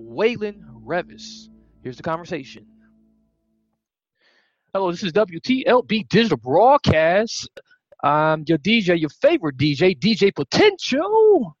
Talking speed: 100 wpm